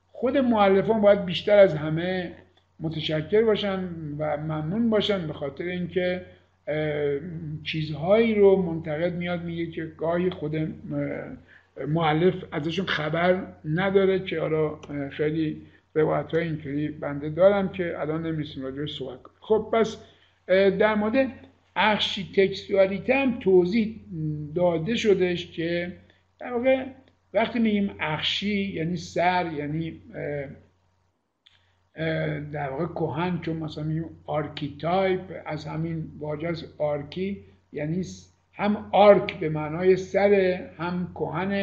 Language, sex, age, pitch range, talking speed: Persian, male, 60-79, 150-190 Hz, 110 wpm